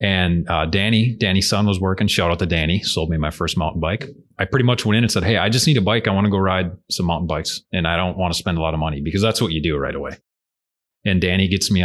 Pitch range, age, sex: 85-110 Hz, 30-49, male